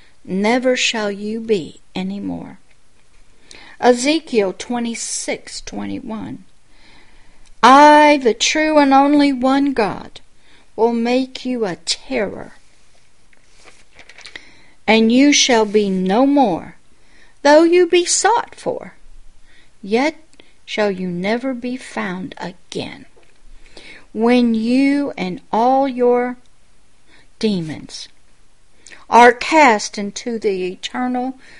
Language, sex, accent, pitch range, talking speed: English, female, American, 205-255 Hz, 95 wpm